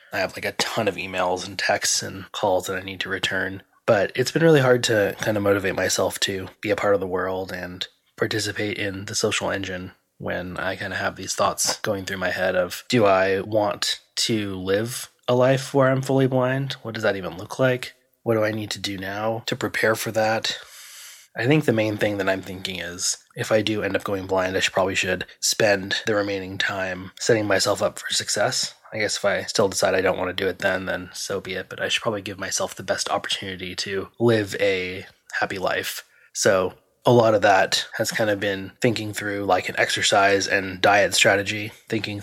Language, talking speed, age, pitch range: English, 225 wpm, 20-39, 95-115 Hz